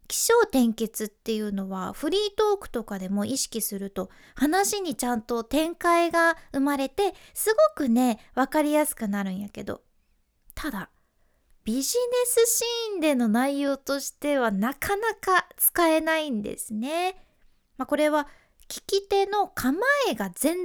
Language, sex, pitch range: Japanese, female, 220-335 Hz